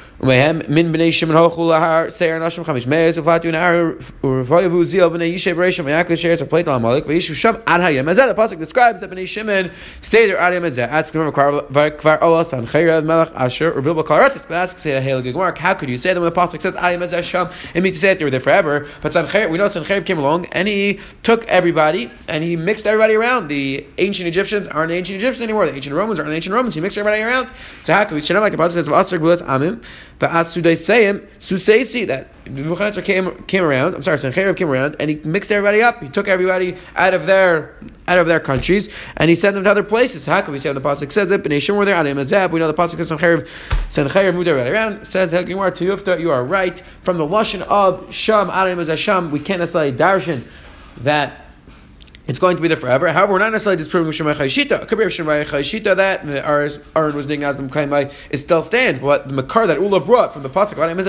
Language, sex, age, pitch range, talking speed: English, male, 30-49, 150-190 Hz, 180 wpm